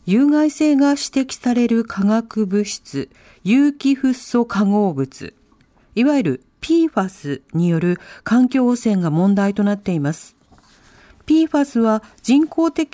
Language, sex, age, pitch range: Japanese, female, 40-59, 185-265 Hz